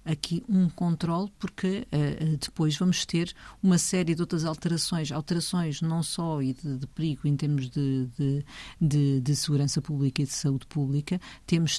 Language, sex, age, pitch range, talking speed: Portuguese, female, 50-69, 155-180 Hz, 170 wpm